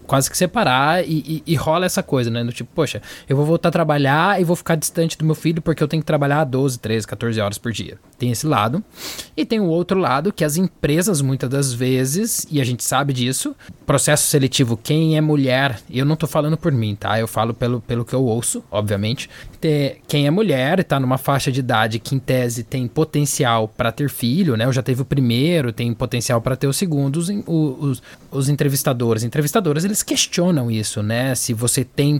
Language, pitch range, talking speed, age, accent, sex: Portuguese, 125-170 Hz, 215 wpm, 20-39, Brazilian, male